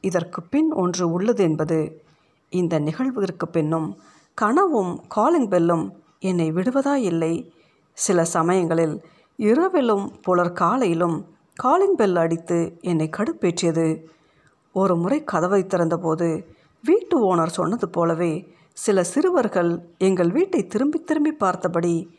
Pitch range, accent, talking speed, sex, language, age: 165-210 Hz, native, 105 wpm, female, Tamil, 50-69